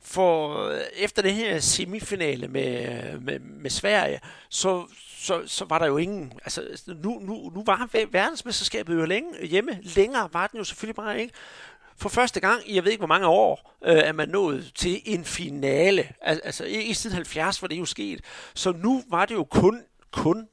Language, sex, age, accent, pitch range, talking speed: Danish, male, 60-79, native, 160-215 Hz, 190 wpm